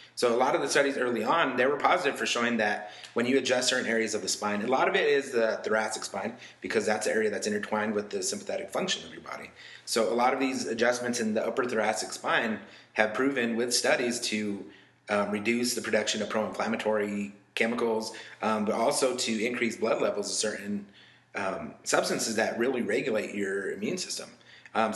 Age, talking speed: 30-49, 200 wpm